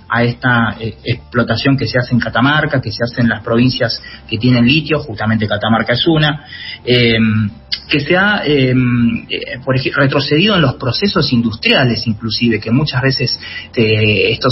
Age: 30-49